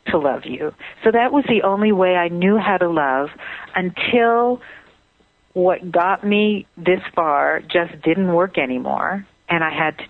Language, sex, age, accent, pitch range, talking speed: English, female, 50-69, American, 155-195 Hz, 165 wpm